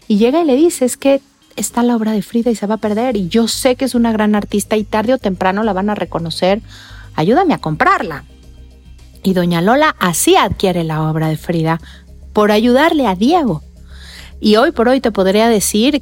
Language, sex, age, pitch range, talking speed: Spanish, female, 40-59, 180-230 Hz, 210 wpm